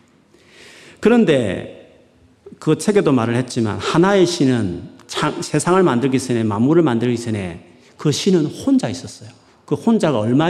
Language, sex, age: Korean, male, 40-59